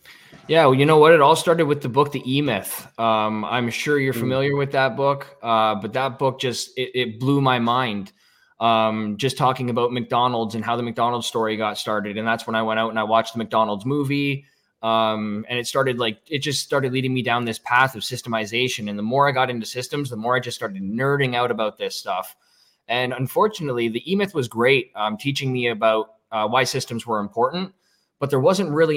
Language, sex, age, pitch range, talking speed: English, male, 20-39, 110-135 Hz, 220 wpm